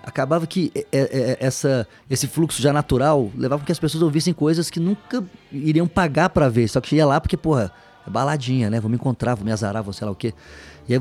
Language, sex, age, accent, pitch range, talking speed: Portuguese, male, 20-39, Brazilian, 115-150 Hz, 230 wpm